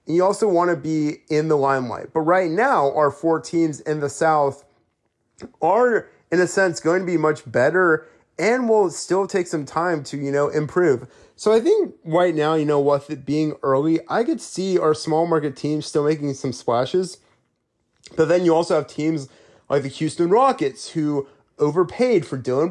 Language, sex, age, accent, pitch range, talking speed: English, male, 30-49, American, 135-170 Hz, 190 wpm